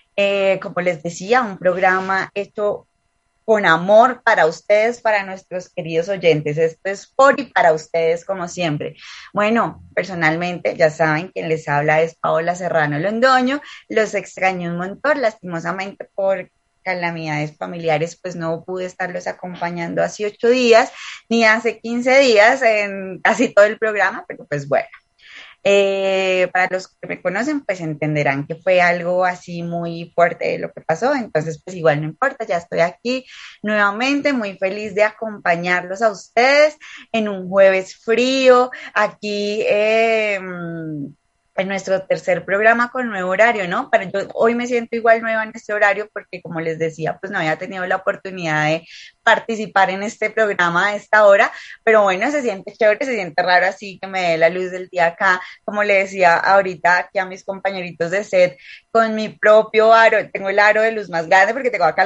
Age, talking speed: 20-39, 170 wpm